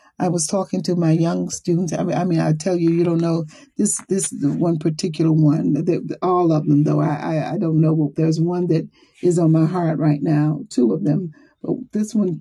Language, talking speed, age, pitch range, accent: English, 220 wpm, 40-59, 160-210 Hz, American